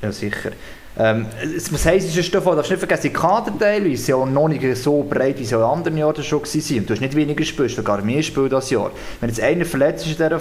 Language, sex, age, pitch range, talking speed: German, male, 20-39, 125-155 Hz, 255 wpm